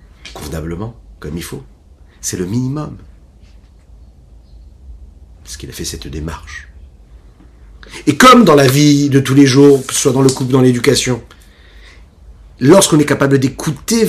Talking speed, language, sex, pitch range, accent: 135 wpm, French, male, 75-105 Hz, French